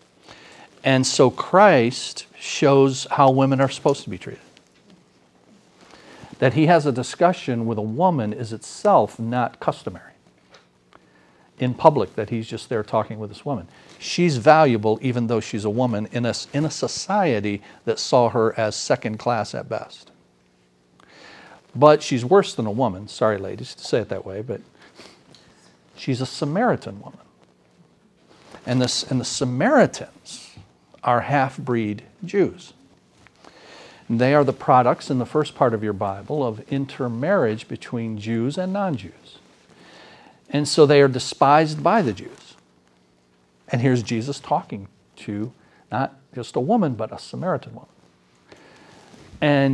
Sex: male